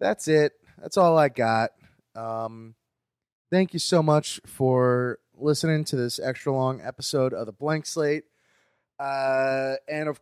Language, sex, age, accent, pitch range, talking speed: English, male, 30-49, American, 115-155 Hz, 145 wpm